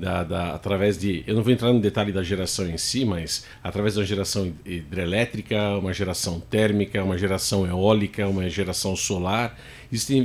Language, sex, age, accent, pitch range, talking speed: Portuguese, male, 50-69, Brazilian, 100-120 Hz, 170 wpm